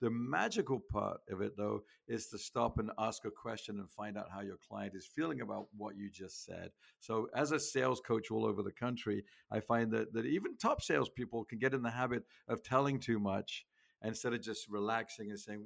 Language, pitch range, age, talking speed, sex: English, 105-125 Hz, 50-69, 220 wpm, male